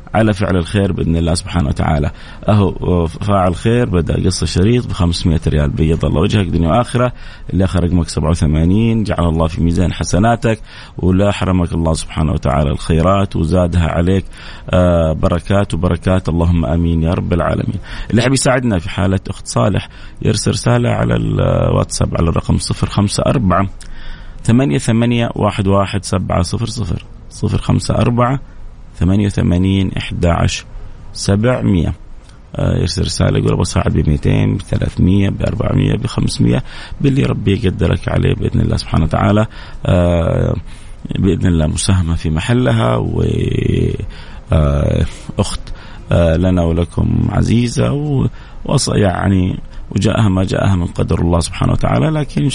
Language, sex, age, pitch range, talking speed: Arabic, male, 30-49, 85-110 Hz, 135 wpm